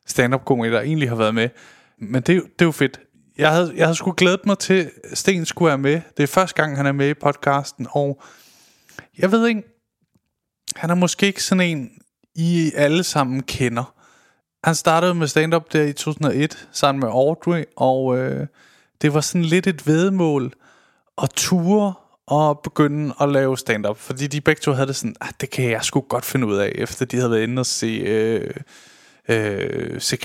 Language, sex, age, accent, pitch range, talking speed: Danish, male, 20-39, native, 130-175 Hz, 190 wpm